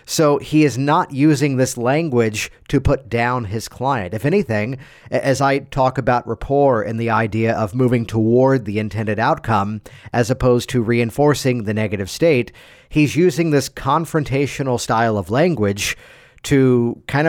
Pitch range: 115-150 Hz